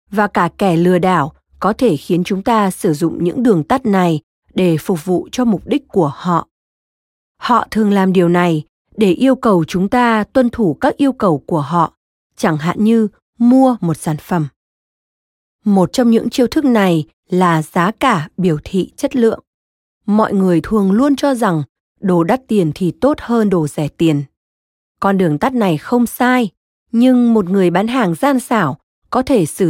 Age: 20-39